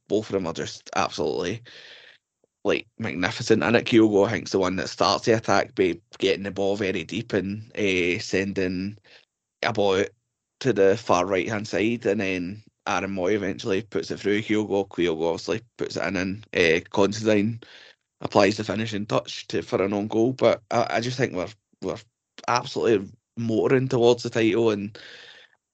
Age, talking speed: 20-39, 175 wpm